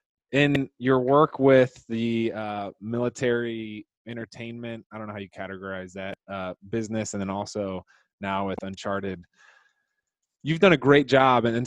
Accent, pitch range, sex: American, 95-115 Hz, male